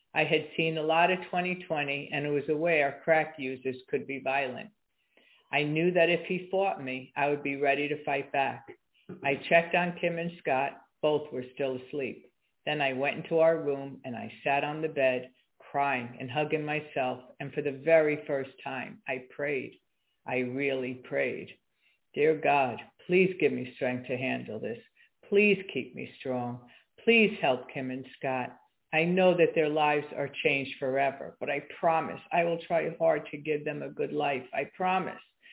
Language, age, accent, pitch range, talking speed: English, 50-69, American, 140-170 Hz, 185 wpm